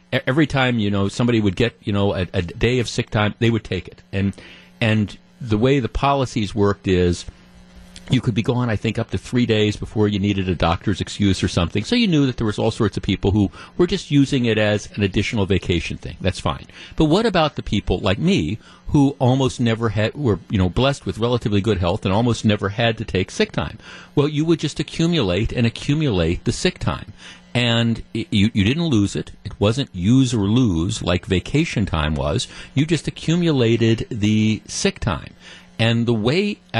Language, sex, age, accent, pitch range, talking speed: English, male, 50-69, American, 100-130 Hz, 210 wpm